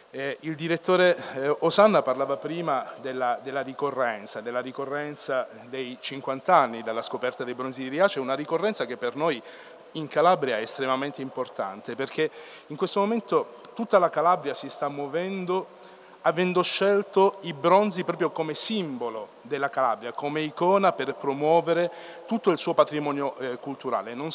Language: Italian